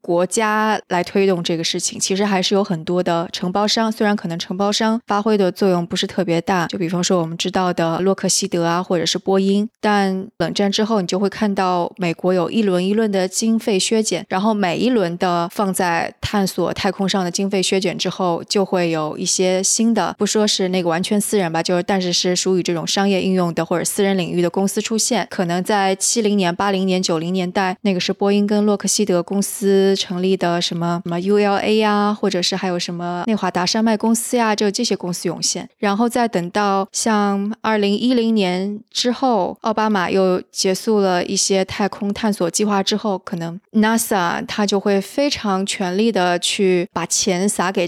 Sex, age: female, 20-39